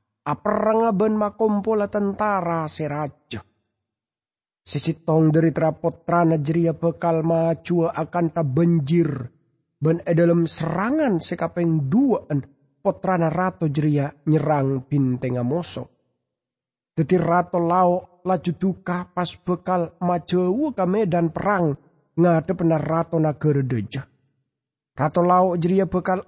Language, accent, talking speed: English, Indonesian, 95 wpm